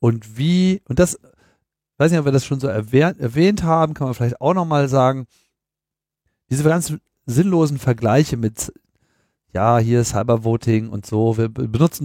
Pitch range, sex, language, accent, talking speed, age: 110-140 Hz, male, German, German, 170 wpm, 40-59